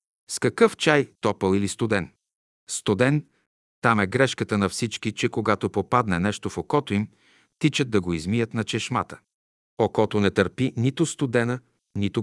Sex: male